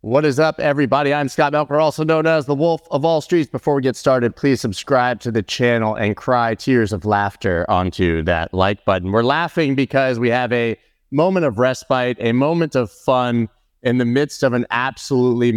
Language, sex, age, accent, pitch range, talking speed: English, male, 30-49, American, 115-150 Hz, 200 wpm